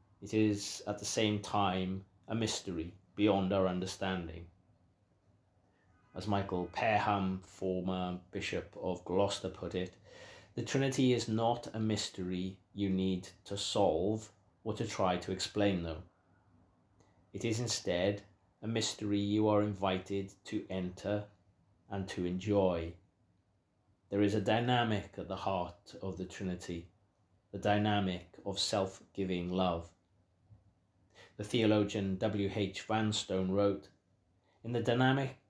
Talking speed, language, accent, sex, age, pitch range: 125 wpm, English, British, male, 30-49, 95-105 Hz